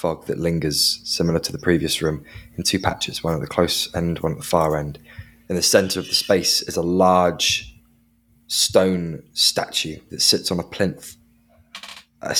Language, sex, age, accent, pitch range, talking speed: English, male, 20-39, British, 80-95 Hz, 185 wpm